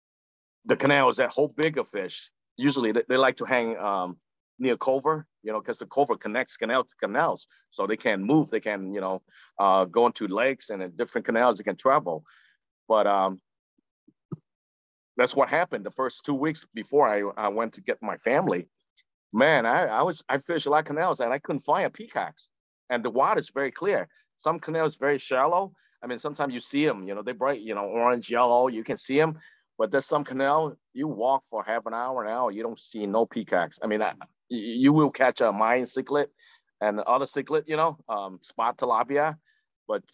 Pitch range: 105-145 Hz